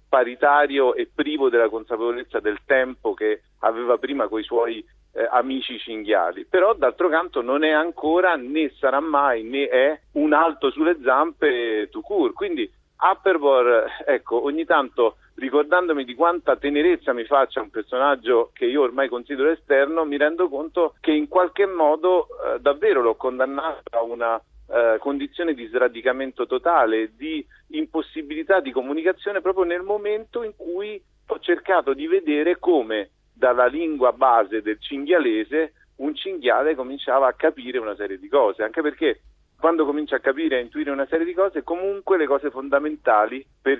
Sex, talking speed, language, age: male, 155 wpm, Italian, 40-59